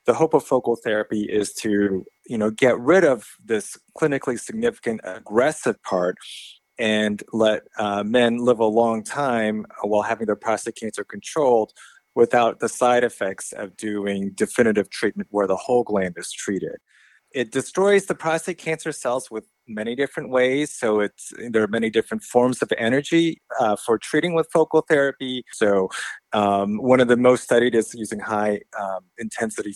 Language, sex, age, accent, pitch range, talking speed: English, male, 30-49, American, 100-125 Hz, 160 wpm